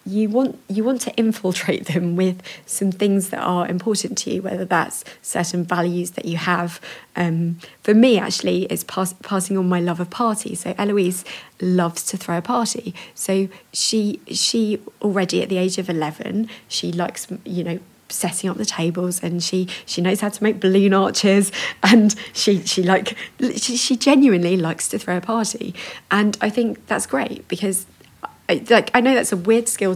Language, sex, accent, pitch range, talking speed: English, female, British, 175-215 Hz, 185 wpm